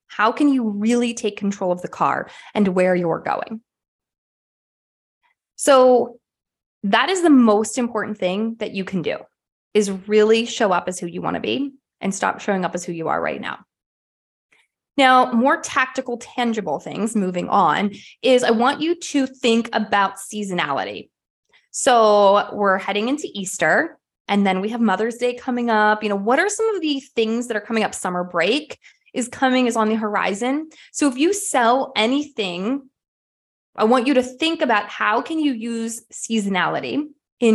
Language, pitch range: English, 200-260 Hz